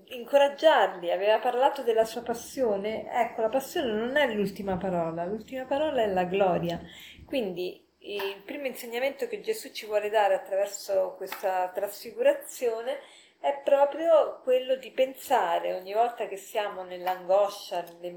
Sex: female